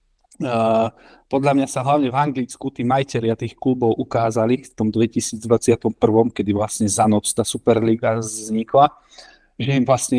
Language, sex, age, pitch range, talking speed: Slovak, male, 40-59, 110-125 Hz, 140 wpm